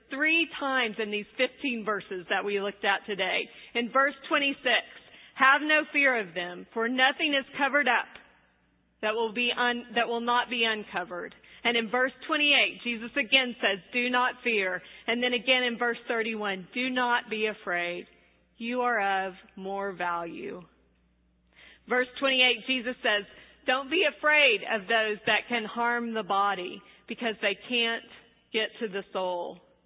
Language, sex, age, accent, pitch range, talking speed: English, female, 40-59, American, 205-255 Hz, 160 wpm